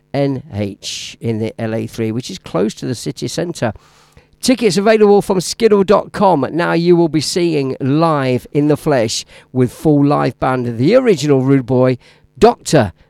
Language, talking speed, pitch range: English, 150 wpm, 125-175 Hz